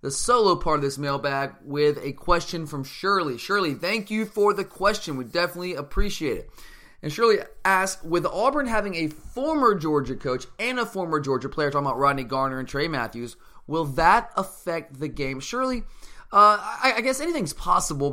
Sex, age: male, 20-39